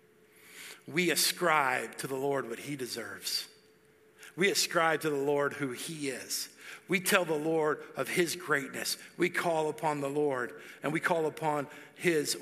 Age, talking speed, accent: 50-69, 160 wpm, American